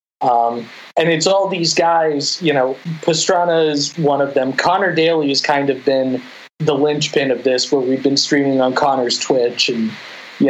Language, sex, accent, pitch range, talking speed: English, male, American, 140-170 Hz, 175 wpm